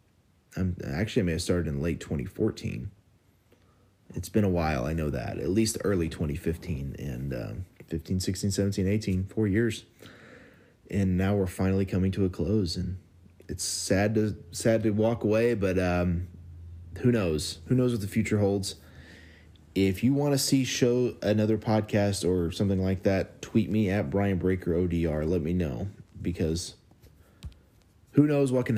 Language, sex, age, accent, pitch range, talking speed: English, male, 30-49, American, 90-110 Hz, 165 wpm